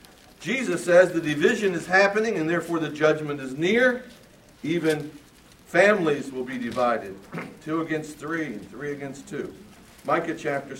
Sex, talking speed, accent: male, 145 wpm, American